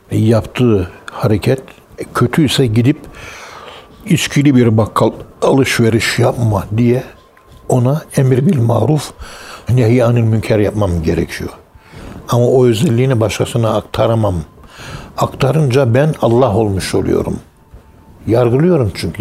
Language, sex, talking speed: Turkish, male, 95 wpm